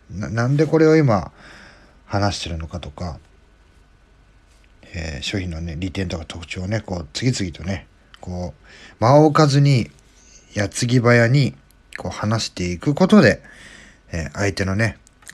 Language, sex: Japanese, male